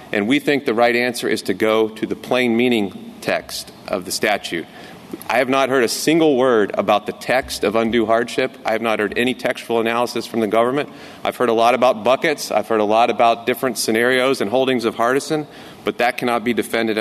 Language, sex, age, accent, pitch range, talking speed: English, male, 40-59, American, 105-125 Hz, 220 wpm